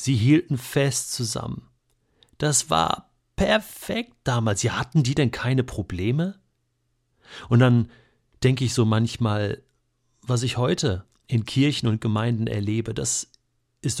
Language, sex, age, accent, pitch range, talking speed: German, male, 40-59, German, 110-130 Hz, 130 wpm